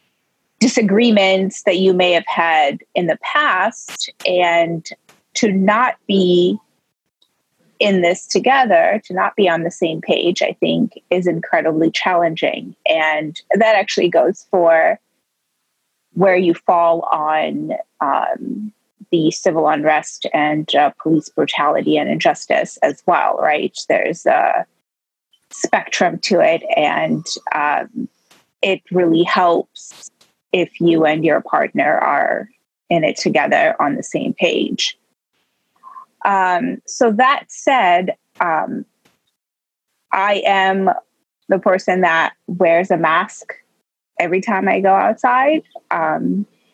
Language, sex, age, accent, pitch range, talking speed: English, female, 30-49, American, 170-225 Hz, 120 wpm